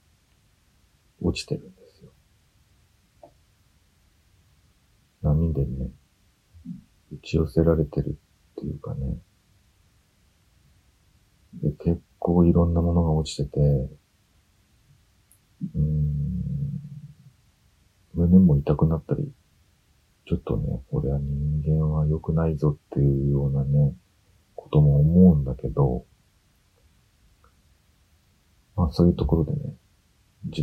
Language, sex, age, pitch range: Japanese, male, 40-59, 75-100 Hz